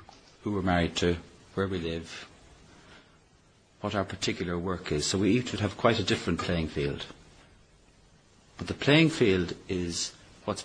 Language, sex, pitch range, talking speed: English, male, 85-105 Hz, 160 wpm